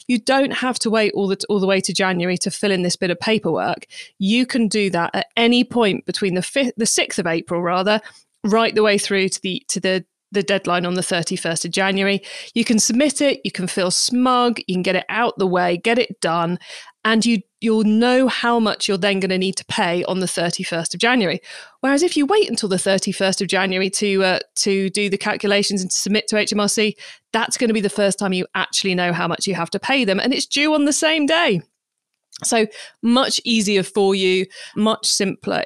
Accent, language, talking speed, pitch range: British, English, 225 wpm, 185-235 Hz